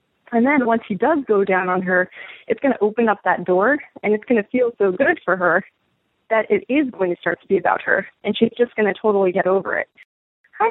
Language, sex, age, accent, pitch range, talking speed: English, female, 20-39, American, 190-235 Hz, 250 wpm